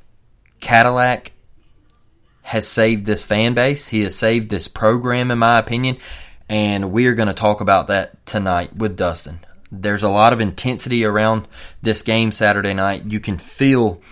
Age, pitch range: 20-39, 95-115 Hz